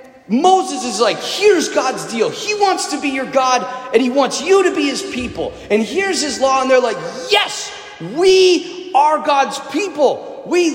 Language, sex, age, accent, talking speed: English, male, 30-49, American, 185 wpm